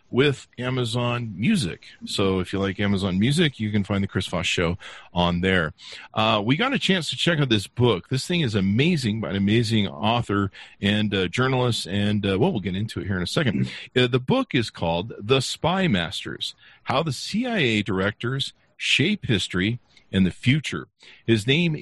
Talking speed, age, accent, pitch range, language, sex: 190 wpm, 50-69, American, 100-150 Hz, English, male